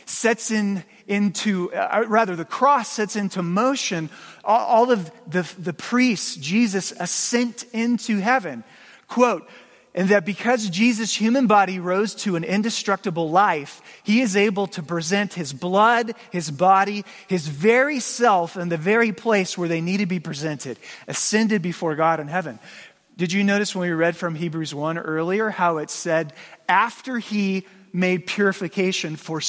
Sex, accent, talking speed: male, American, 160 wpm